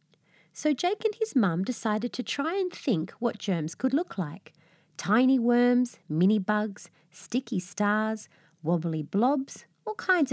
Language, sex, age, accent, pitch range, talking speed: English, female, 30-49, Australian, 165-250 Hz, 145 wpm